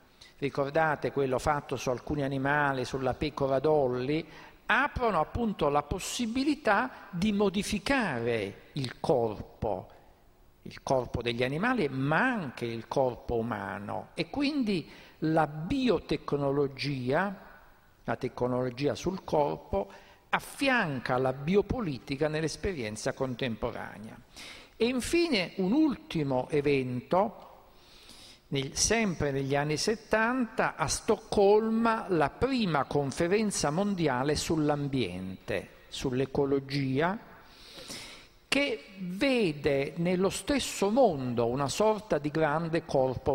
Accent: native